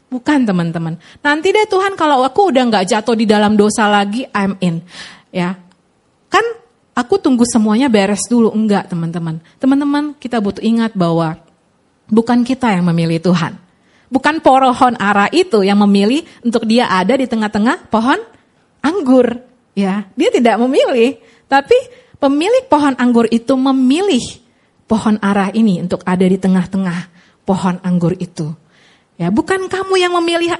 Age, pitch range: 30-49, 200-325 Hz